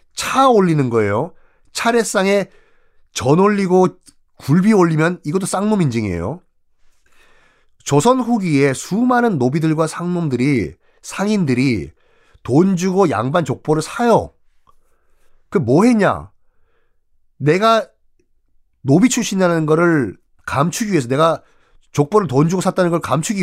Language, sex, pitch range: Korean, male, 140-215 Hz